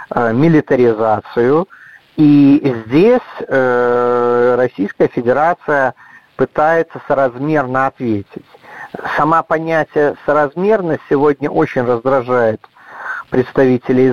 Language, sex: Russian, male